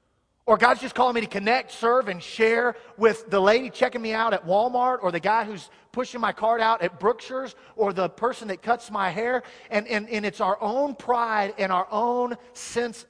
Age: 40-59